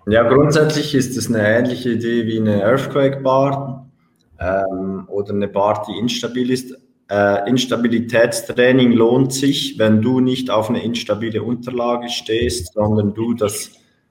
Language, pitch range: German, 105-125 Hz